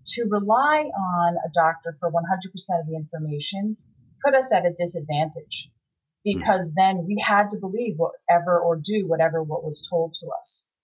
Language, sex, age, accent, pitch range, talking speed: English, female, 30-49, American, 165-200 Hz, 165 wpm